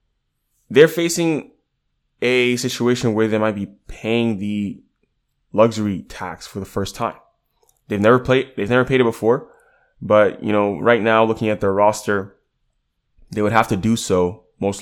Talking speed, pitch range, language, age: 160 wpm, 90-110 Hz, English, 20-39